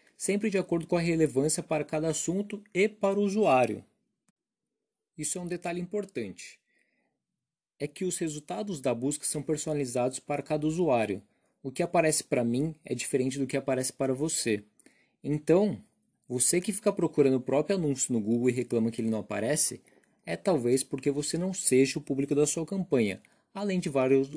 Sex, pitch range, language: male, 135-170 Hz, Portuguese